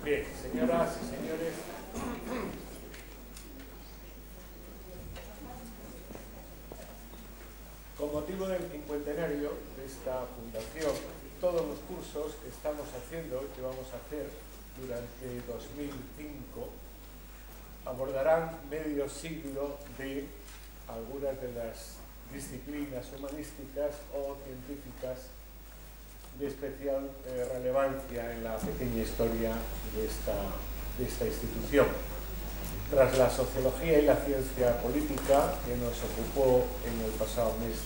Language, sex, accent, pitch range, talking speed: Spanish, male, Argentinian, 115-145 Hz, 95 wpm